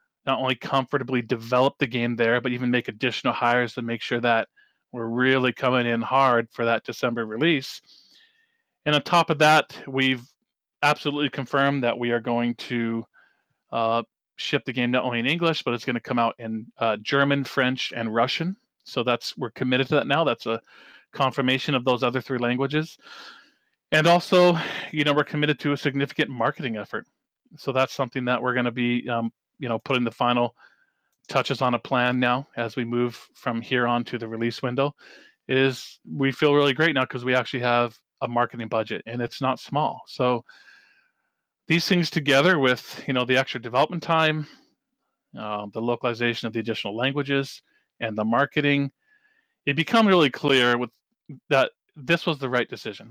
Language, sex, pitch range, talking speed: English, male, 120-145 Hz, 185 wpm